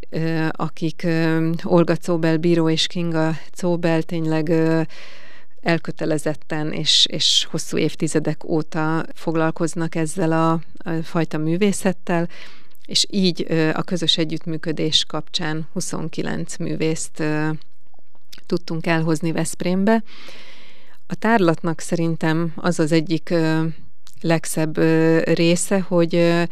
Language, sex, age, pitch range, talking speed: Hungarian, female, 30-49, 160-175 Hz, 90 wpm